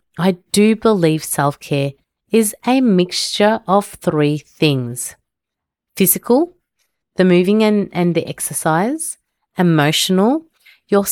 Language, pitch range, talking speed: English, 160-215 Hz, 105 wpm